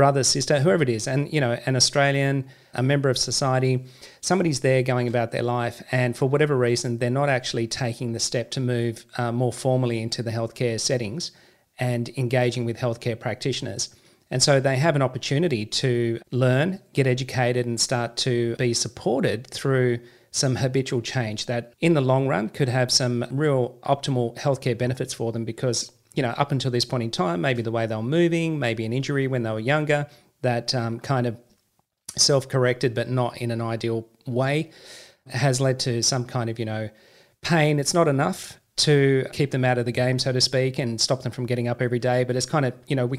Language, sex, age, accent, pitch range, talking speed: English, male, 40-59, Australian, 120-135 Hz, 205 wpm